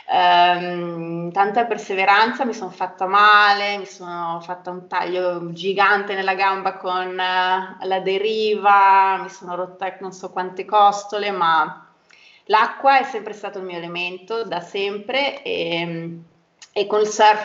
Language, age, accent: Italian, 30-49, native